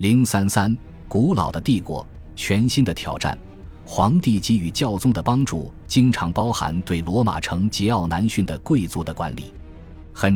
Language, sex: Chinese, male